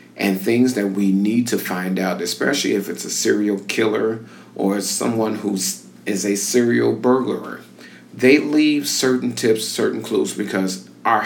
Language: English